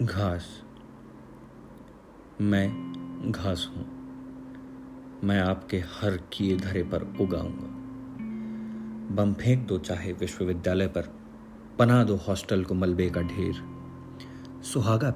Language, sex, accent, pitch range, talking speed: Hindi, male, native, 85-115 Hz, 105 wpm